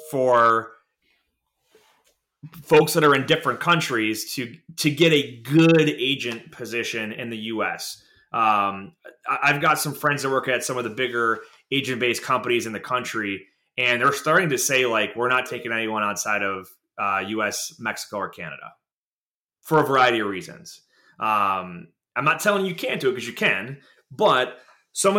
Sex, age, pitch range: male, 20-39, 115-150 Hz